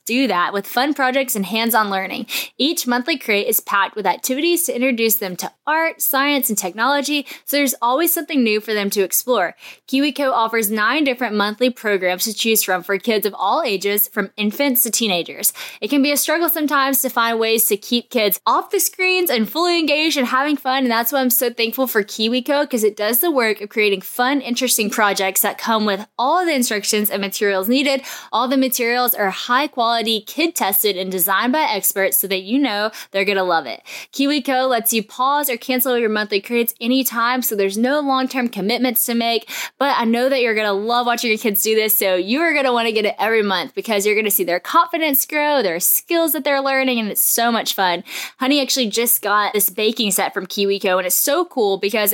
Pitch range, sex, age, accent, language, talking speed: 205-265 Hz, female, 10-29, American, English, 215 wpm